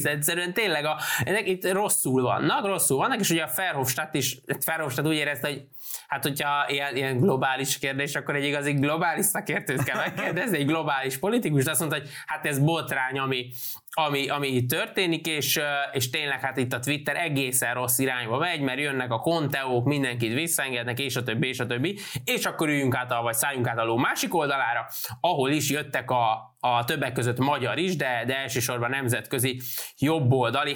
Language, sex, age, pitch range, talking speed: Hungarian, male, 20-39, 125-155 Hz, 190 wpm